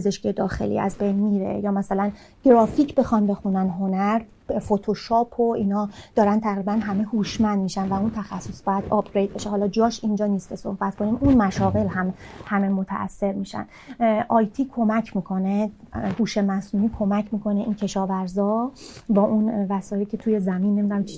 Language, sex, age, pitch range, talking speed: Persian, female, 30-49, 200-240 Hz, 155 wpm